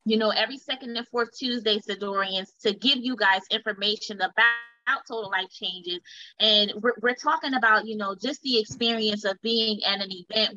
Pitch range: 200-240 Hz